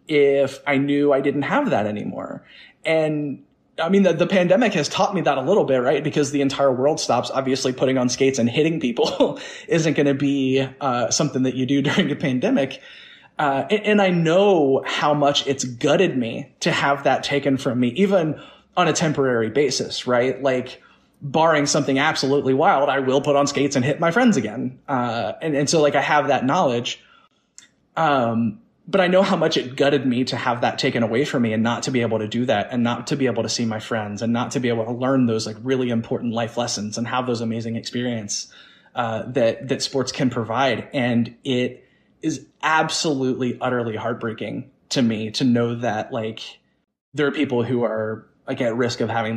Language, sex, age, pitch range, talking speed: English, male, 20-39, 120-145 Hz, 210 wpm